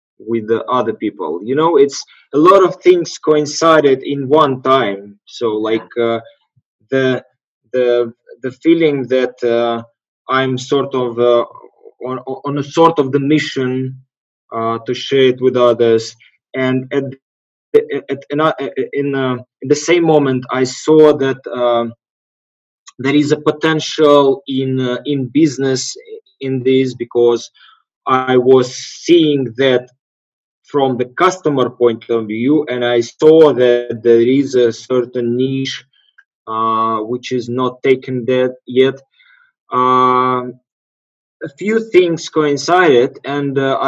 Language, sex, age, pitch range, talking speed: English, male, 20-39, 120-145 Hz, 135 wpm